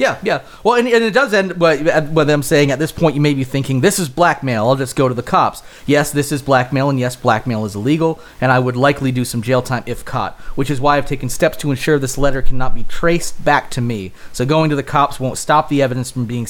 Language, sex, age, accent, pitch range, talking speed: English, male, 30-49, American, 125-150 Hz, 260 wpm